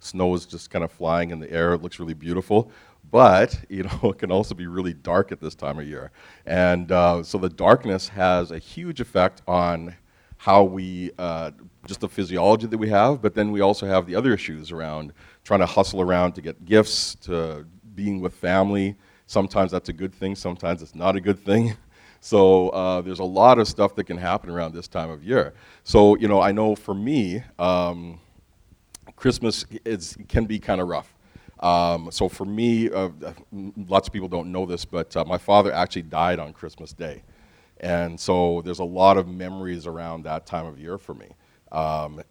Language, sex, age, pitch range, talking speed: English, male, 40-59, 85-100 Hz, 200 wpm